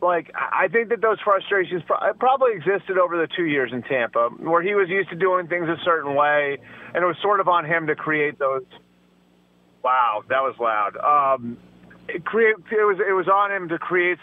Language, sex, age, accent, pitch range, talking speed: English, male, 30-49, American, 145-185 Hz, 205 wpm